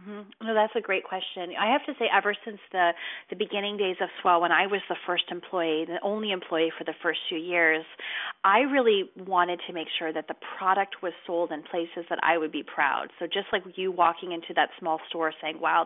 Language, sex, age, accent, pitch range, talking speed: English, female, 30-49, American, 165-200 Hz, 230 wpm